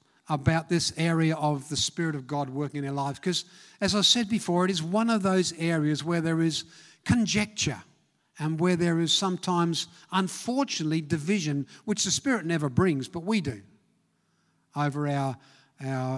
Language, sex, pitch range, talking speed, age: English, male, 150-185 Hz, 165 wpm, 50-69